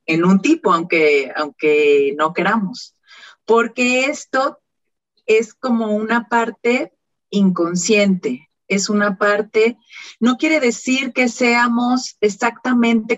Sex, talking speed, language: female, 105 wpm, Spanish